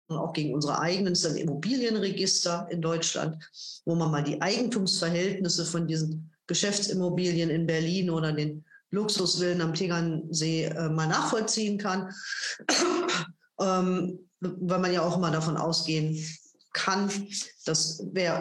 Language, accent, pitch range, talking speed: German, German, 160-195 Hz, 130 wpm